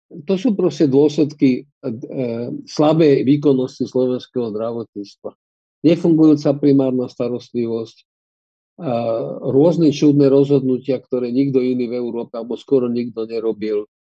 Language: Slovak